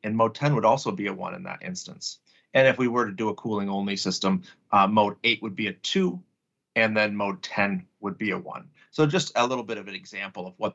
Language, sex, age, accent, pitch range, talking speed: English, male, 30-49, American, 105-140 Hz, 255 wpm